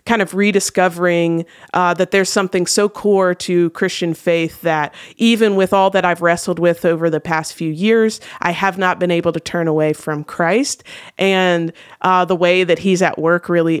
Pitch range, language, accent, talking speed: 165-190 Hz, English, American, 190 wpm